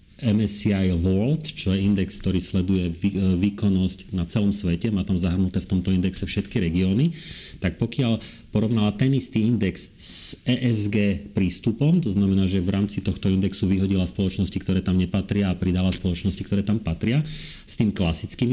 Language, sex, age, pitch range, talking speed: Slovak, male, 40-59, 95-105 Hz, 160 wpm